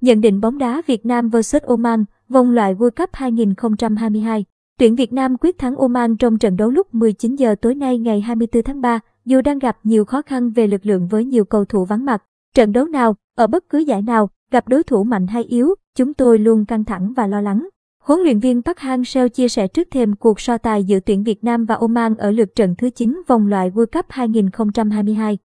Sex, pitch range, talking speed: male, 220-255 Hz, 225 wpm